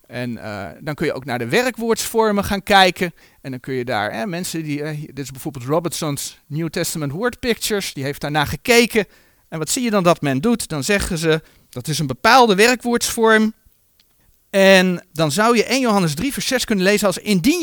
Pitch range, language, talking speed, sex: 160-245 Hz, Dutch, 210 wpm, male